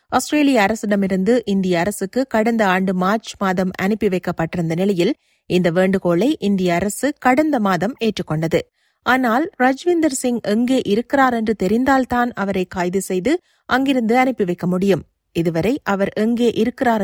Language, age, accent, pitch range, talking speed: Tamil, 30-49, native, 190-245 Hz, 125 wpm